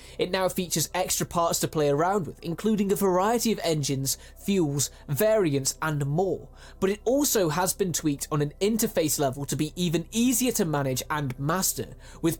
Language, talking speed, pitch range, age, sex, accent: Finnish, 180 wpm, 145-200 Hz, 20-39, male, British